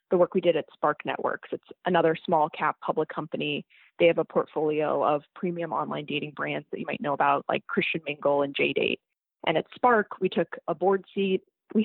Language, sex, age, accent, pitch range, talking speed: English, female, 20-39, American, 165-195 Hz, 210 wpm